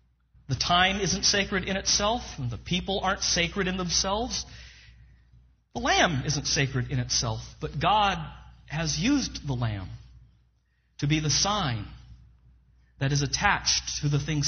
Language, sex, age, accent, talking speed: English, male, 40-59, American, 145 wpm